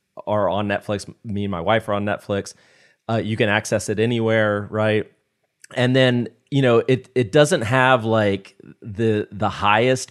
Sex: male